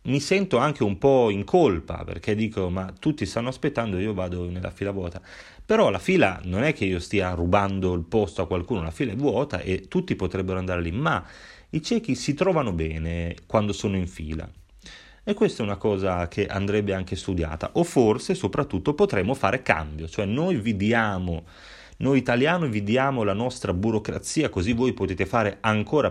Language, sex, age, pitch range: Italian, male, 30-49, 95-120 Hz